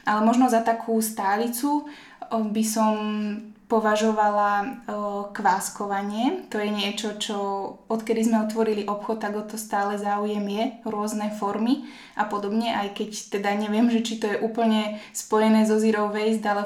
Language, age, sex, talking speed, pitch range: Slovak, 20-39, female, 150 wpm, 210-225 Hz